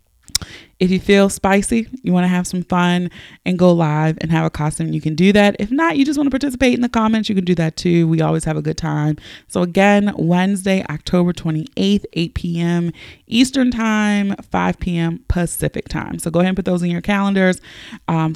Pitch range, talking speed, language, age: 155-200 Hz, 205 wpm, English, 30-49